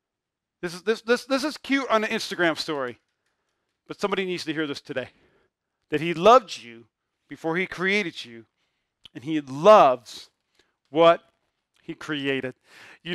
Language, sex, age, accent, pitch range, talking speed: English, male, 40-59, American, 165-240 Hz, 145 wpm